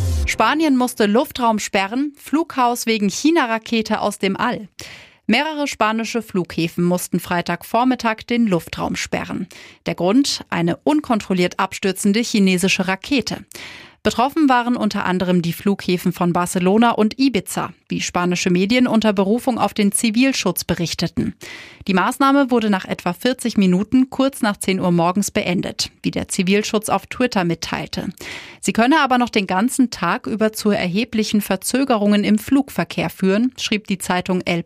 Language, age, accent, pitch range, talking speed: German, 30-49, German, 180-235 Hz, 140 wpm